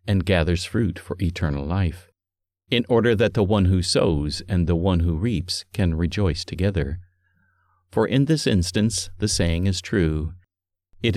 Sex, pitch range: male, 90-110 Hz